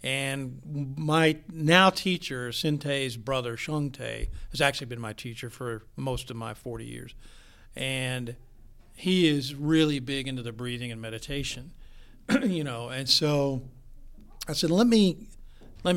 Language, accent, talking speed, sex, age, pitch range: English, American, 140 wpm, male, 50-69, 115-135 Hz